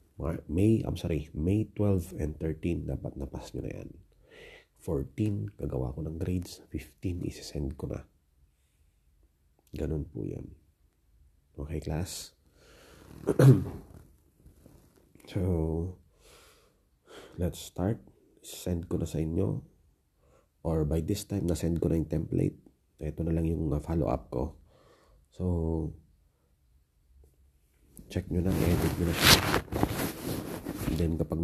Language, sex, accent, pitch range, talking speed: English, male, Filipino, 75-90 Hz, 115 wpm